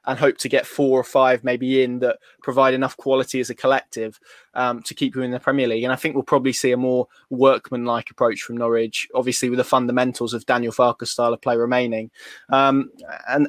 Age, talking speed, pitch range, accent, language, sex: 20-39, 220 wpm, 125-140 Hz, British, English, male